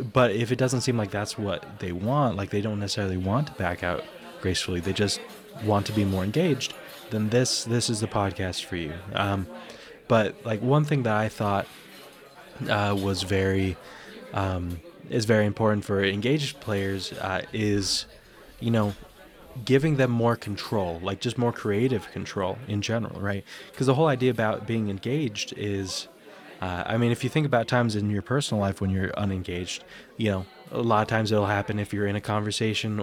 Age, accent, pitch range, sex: 20-39, American, 100-120 Hz, male